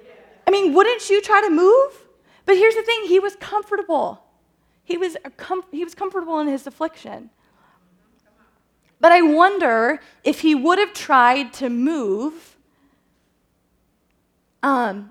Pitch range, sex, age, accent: 225-330 Hz, female, 20-39, American